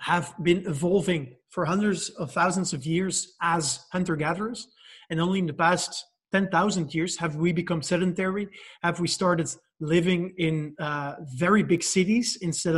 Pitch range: 165-195 Hz